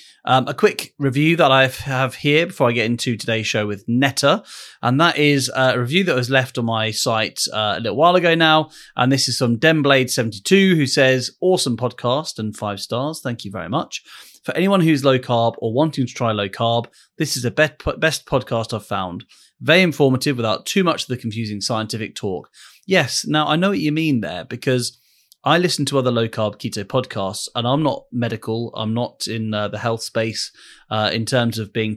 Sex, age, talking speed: male, 30-49, 205 wpm